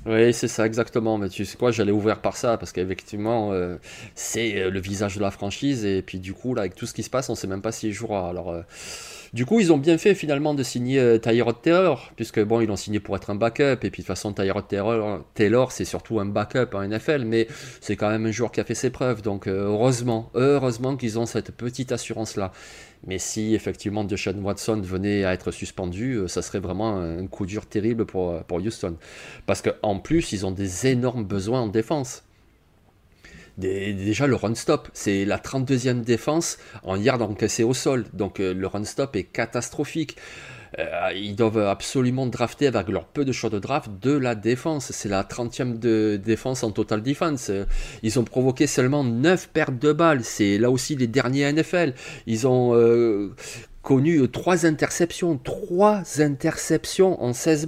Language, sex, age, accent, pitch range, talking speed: French, male, 30-49, French, 100-135 Hz, 200 wpm